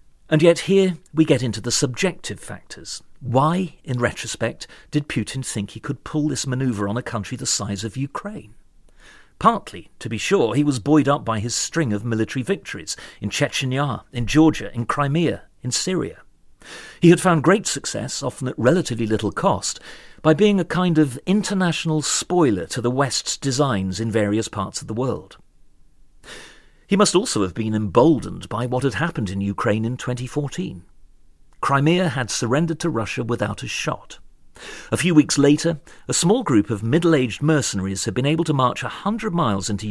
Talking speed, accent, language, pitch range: 175 wpm, British, English, 110-160 Hz